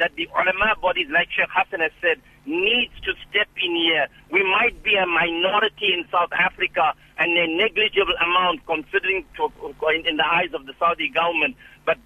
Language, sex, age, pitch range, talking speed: English, male, 50-69, 165-230 Hz, 180 wpm